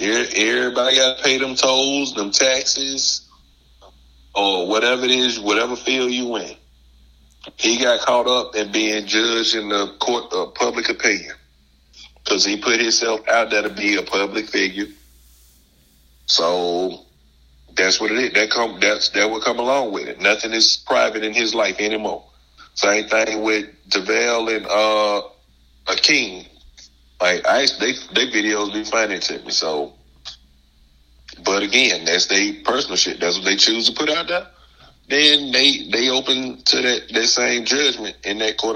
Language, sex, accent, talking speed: English, male, American, 165 wpm